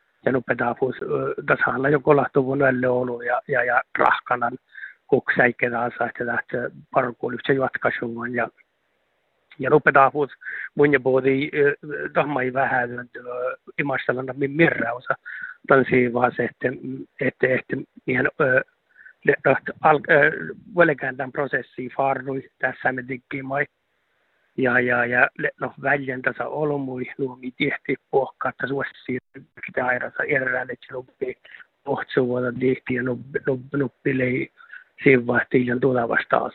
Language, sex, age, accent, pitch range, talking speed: Finnish, male, 60-79, native, 125-145 Hz, 85 wpm